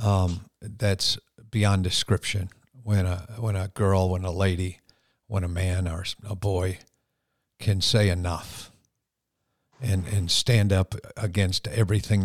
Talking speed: 130 wpm